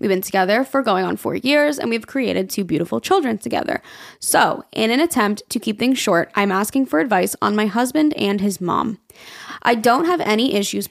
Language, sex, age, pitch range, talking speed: English, female, 20-39, 195-250 Hz, 210 wpm